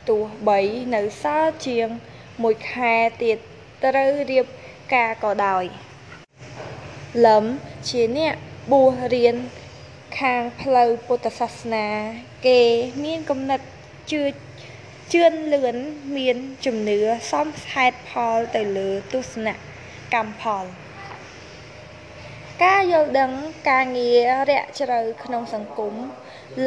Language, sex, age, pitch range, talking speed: English, female, 20-39, 215-265 Hz, 35 wpm